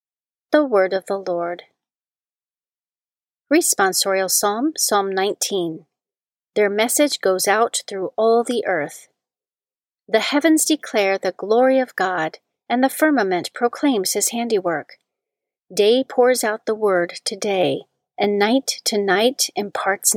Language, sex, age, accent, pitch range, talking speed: English, female, 40-59, American, 195-265 Hz, 125 wpm